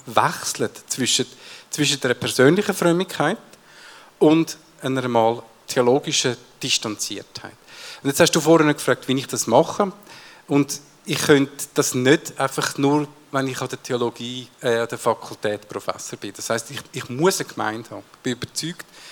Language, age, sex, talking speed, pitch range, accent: German, 50-69, male, 155 wpm, 120-150 Hz, Austrian